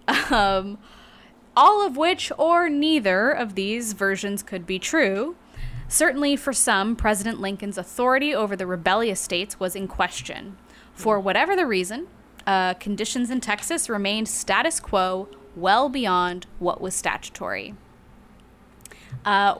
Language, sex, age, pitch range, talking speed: English, female, 10-29, 190-265 Hz, 130 wpm